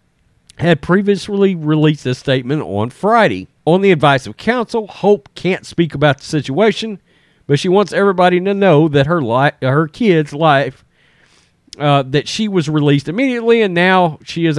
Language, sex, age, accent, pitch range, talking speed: English, male, 40-59, American, 140-200 Hz, 160 wpm